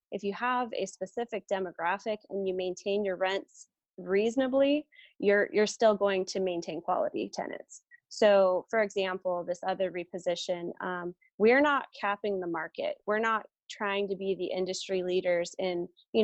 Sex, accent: female, American